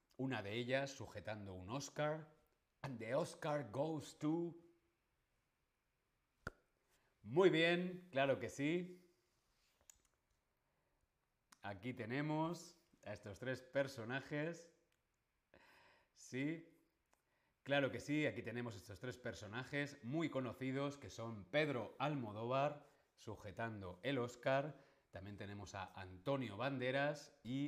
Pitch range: 105-150 Hz